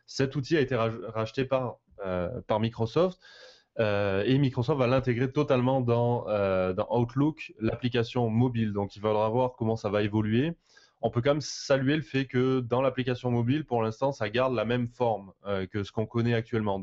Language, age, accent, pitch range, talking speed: French, 20-39, French, 110-135 Hz, 190 wpm